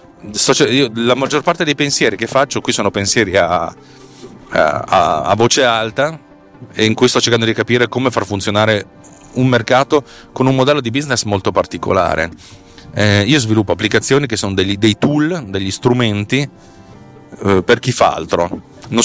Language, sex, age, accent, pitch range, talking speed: Italian, male, 30-49, native, 100-125 Hz, 160 wpm